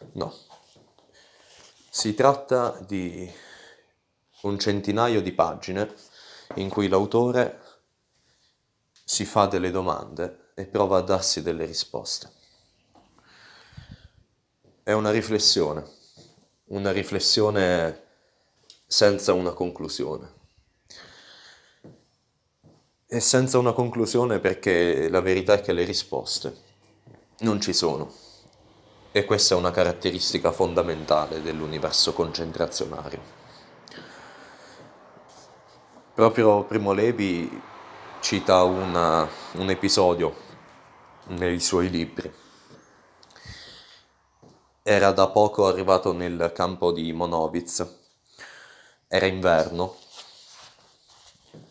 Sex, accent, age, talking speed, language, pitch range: male, native, 30-49, 80 wpm, Italian, 85-105 Hz